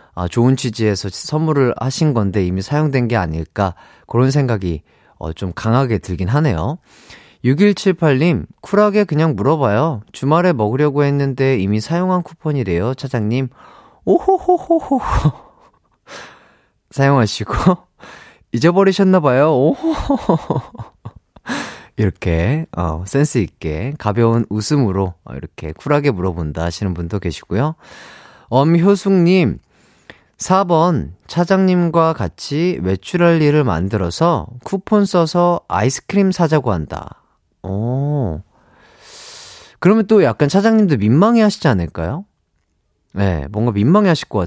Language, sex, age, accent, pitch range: Korean, male, 30-49, native, 105-175 Hz